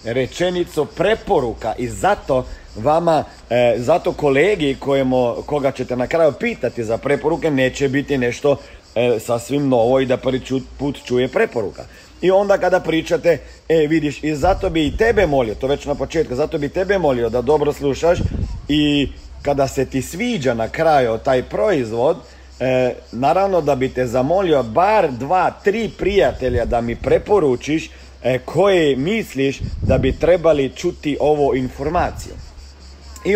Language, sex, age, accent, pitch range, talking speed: Croatian, male, 40-59, native, 125-160 Hz, 150 wpm